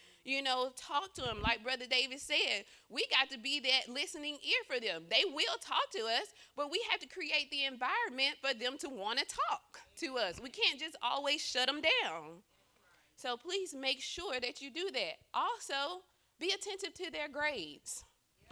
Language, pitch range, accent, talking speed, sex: English, 235-315 Hz, American, 190 wpm, female